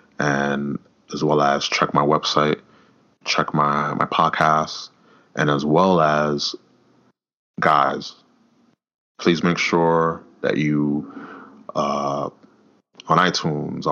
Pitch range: 70-80 Hz